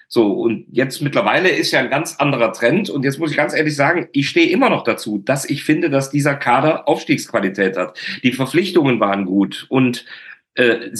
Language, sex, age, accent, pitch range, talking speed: German, male, 40-59, German, 120-160 Hz, 195 wpm